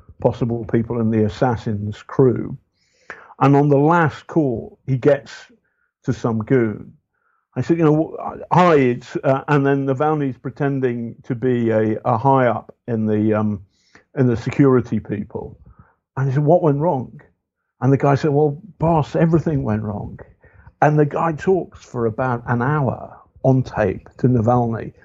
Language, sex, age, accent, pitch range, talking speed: English, male, 50-69, British, 115-150 Hz, 160 wpm